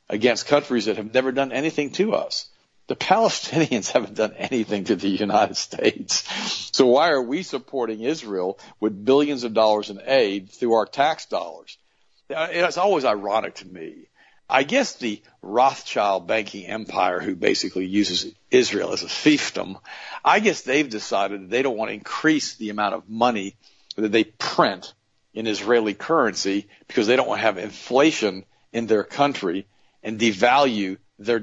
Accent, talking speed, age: American, 160 wpm, 50-69